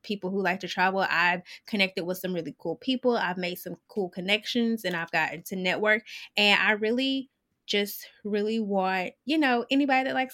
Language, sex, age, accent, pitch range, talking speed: English, female, 20-39, American, 180-230 Hz, 190 wpm